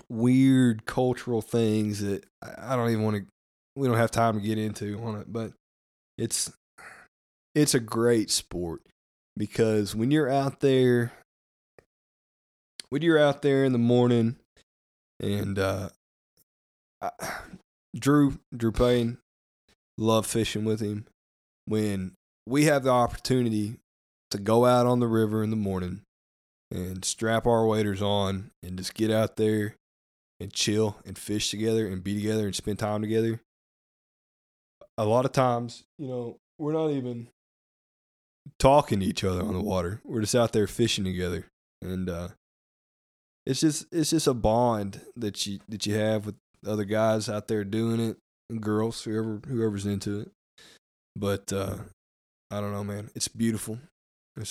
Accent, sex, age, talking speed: American, male, 20-39, 150 wpm